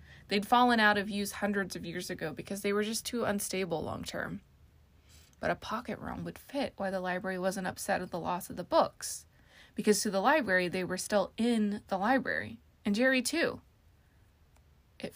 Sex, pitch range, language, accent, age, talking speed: female, 170-215 Hz, English, American, 20-39, 185 wpm